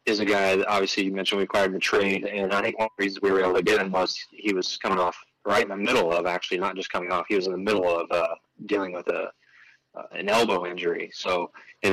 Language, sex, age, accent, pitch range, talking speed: English, male, 20-39, American, 90-110 Hz, 265 wpm